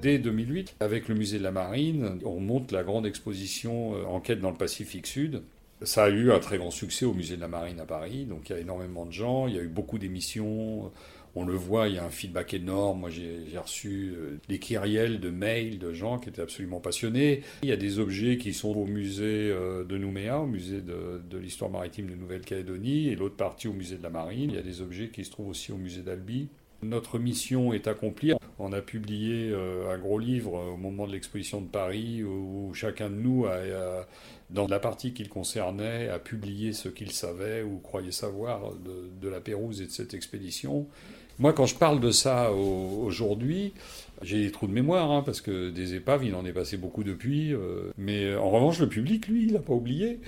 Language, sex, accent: French, male, French